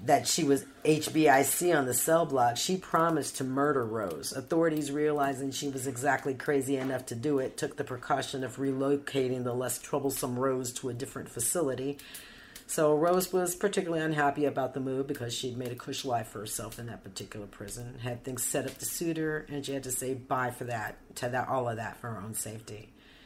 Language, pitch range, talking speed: English, 125-145 Hz, 205 wpm